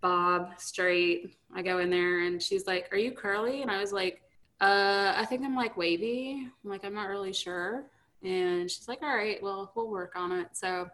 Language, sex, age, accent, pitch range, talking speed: English, female, 20-39, American, 180-205 Hz, 215 wpm